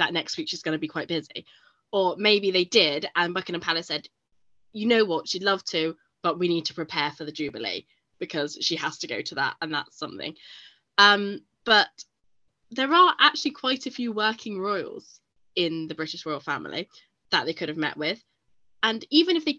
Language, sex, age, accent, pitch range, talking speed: English, female, 10-29, British, 160-225 Hz, 200 wpm